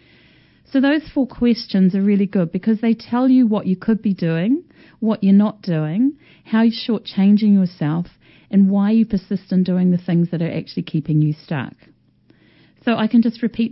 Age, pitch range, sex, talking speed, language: 40-59, 180-225 Hz, female, 190 wpm, English